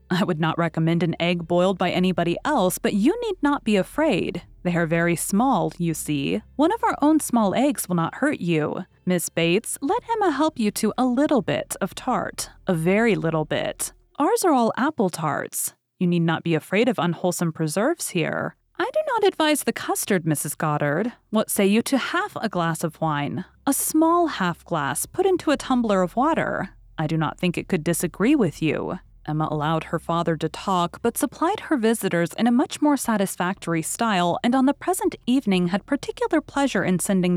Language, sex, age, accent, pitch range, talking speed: English, female, 30-49, American, 170-275 Hz, 200 wpm